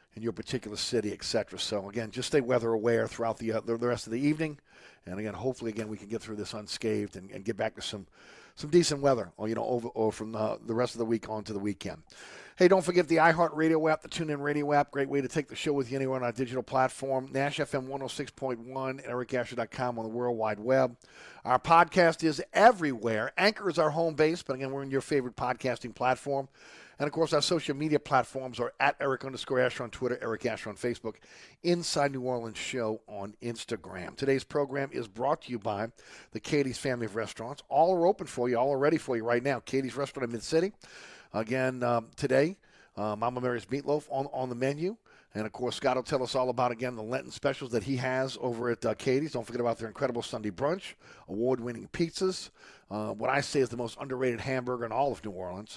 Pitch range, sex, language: 115-140 Hz, male, English